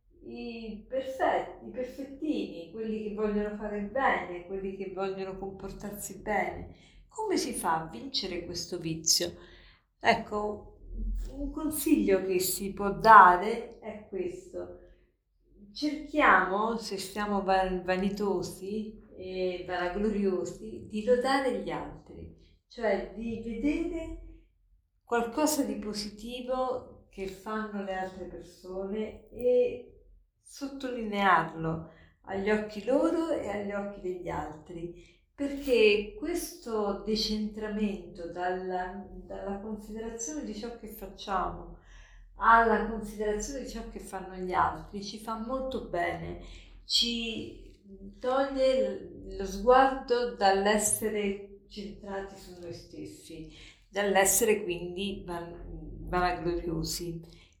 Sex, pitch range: female, 185-230 Hz